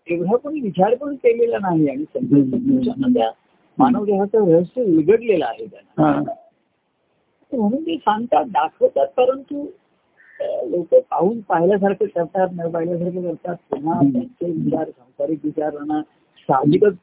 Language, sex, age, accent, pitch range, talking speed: Marathi, male, 50-69, native, 165-255 Hz, 110 wpm